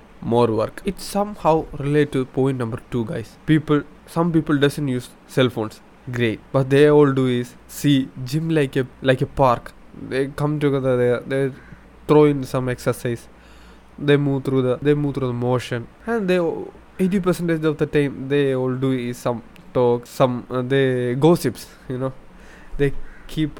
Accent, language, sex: native, Malayalam, male